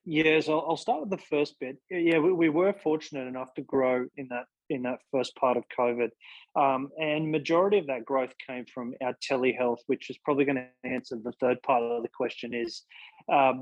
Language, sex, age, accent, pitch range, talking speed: English, male, 20-39, Australian, 125-145 Hz, 210 wpm